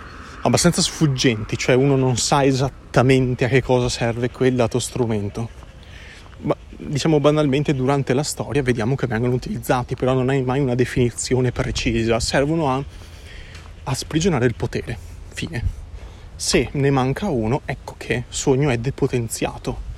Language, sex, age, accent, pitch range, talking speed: Italian, male, 30-49, native, 95-135 Hz, 145 wpm